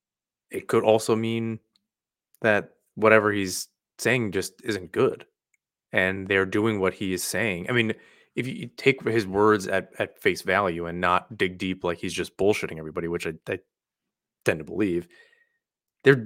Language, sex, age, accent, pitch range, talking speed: English, male, 20-39, American, 100-130 Hz, 165 wpm